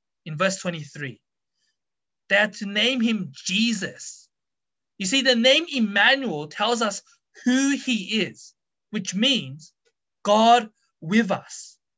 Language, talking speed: English, 120 wpm